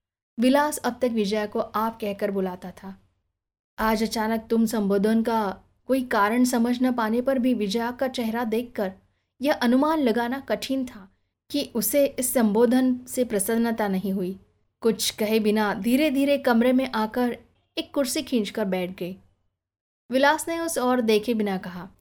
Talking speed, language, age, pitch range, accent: 160 wpm, Hindi, 20-39, 200-255 Hz, native